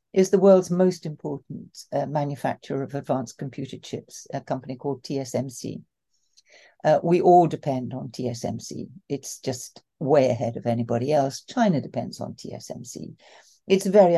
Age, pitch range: 60-79, 130-180 Hz